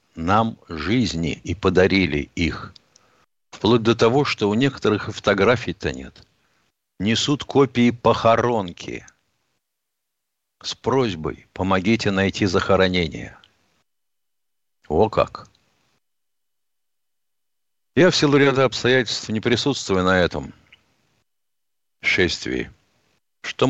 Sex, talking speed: male, 90 wpm